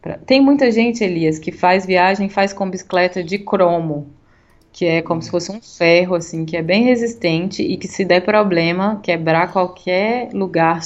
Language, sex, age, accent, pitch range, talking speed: Portuguese, female, 20-39, Brazilian, 165-195 Hz, 180 wpm